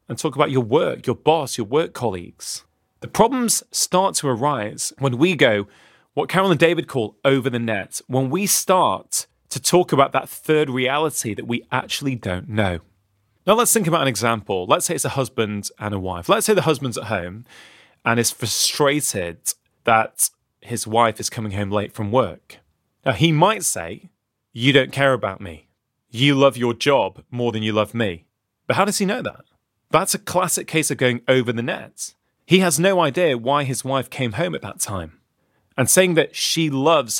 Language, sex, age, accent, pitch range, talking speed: English, male, 30-49, British, 115-165 Hz, 195 wpm